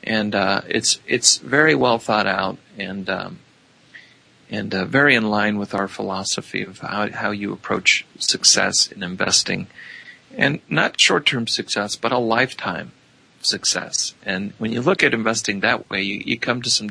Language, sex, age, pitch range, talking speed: English, male, 40-59, 95-115 Hz, 165 wpm